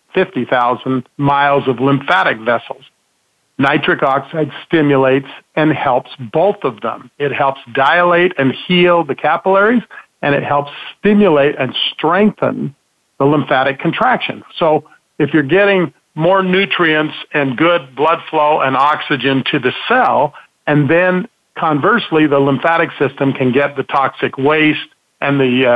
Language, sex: English, male